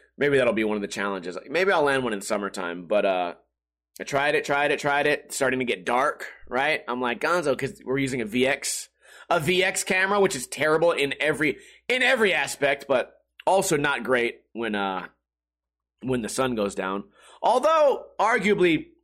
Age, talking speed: 30-49, 190 wpm